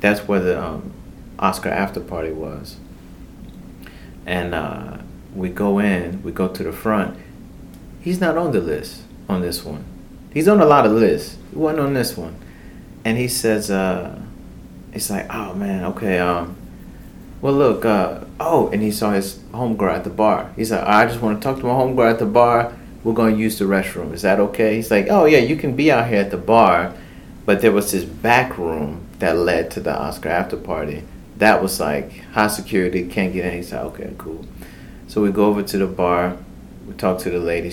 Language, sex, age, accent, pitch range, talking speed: English, male, 30-49, American, 90-110 Hz, 210 wpm